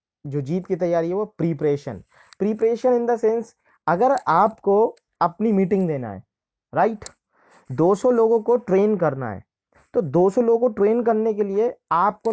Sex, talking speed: male, 165 wpm